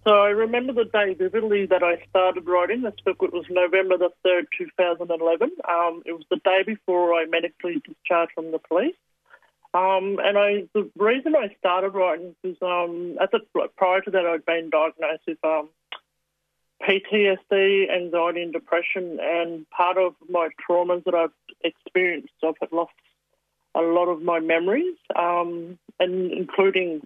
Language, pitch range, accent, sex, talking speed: English, 165-185 Hz, Australian, male, 160 wpm